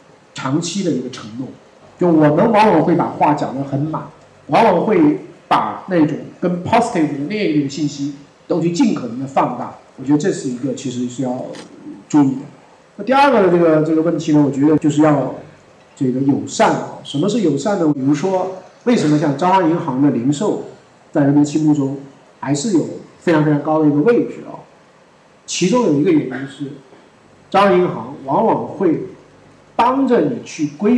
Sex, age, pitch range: male, 50-69, 145-200 Hz